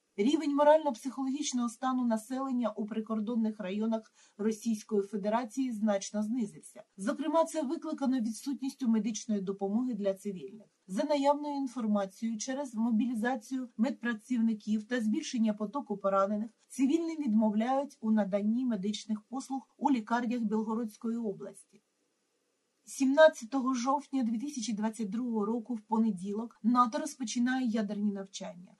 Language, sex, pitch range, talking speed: Ukrainian, female, 210-260 Hz, 100 wpm